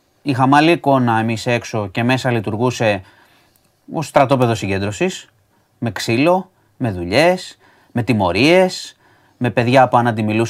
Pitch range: 110-145 Hz